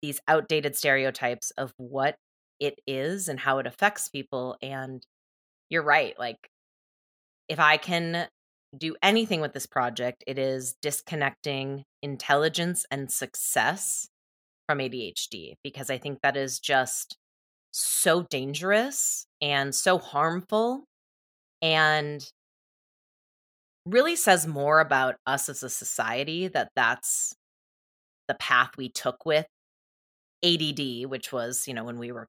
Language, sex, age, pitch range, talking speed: English, female, 20-39, 130-170 Hz, 125 wpm